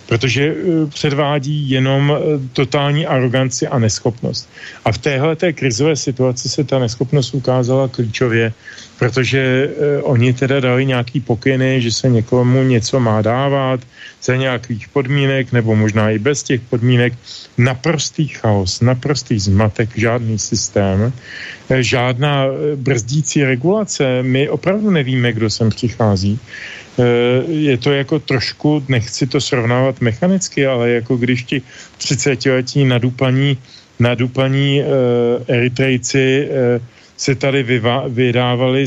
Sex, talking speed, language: male, 125 wpm, Slovak